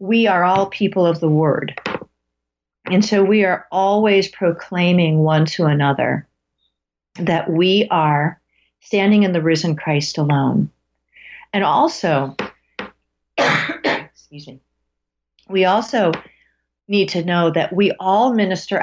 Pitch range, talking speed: 155-210 Hz, 120 wpm